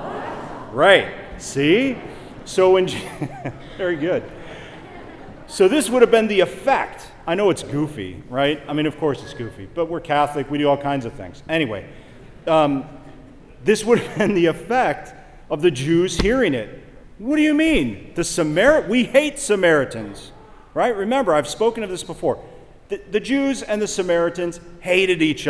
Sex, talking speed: male, 165 wpm